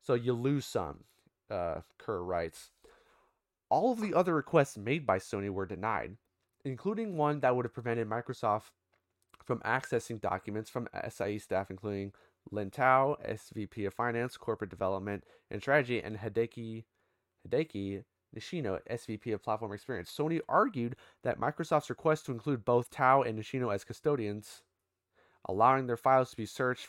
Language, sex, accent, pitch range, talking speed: English, male, American, 105-130 Hz, 150 wpm